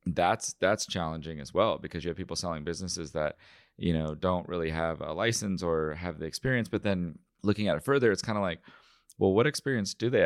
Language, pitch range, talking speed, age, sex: English, 80-105 Hz, 220 wpm, 30-49, male